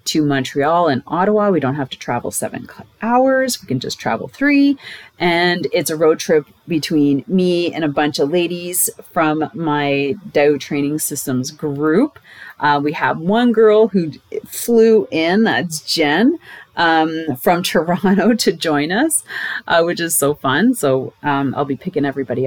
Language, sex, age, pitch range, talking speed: English, female, 30-49, 140-185 Hz, 165 wpm